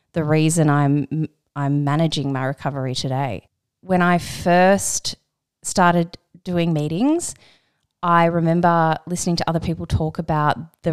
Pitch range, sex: 150-180 Hz, female